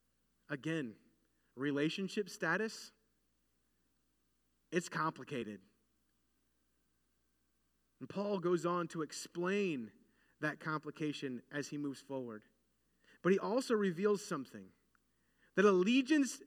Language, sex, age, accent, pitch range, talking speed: English, male, 30-49, American, 150-215 Hz, 85 wpm